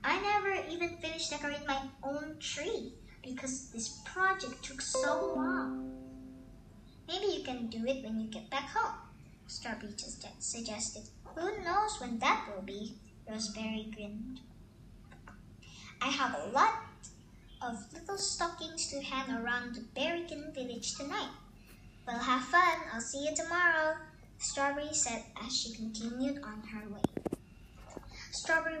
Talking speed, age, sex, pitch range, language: 140 wpm, 20-39, male, 230-325 Hz, English